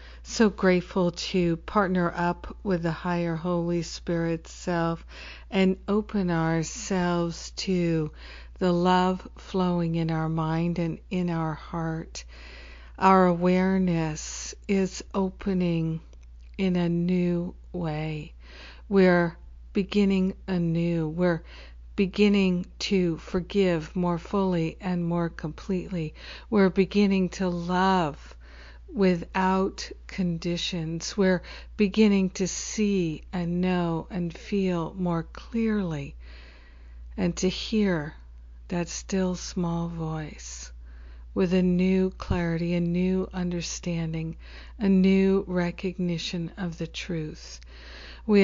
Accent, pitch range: American, 160-185 Hz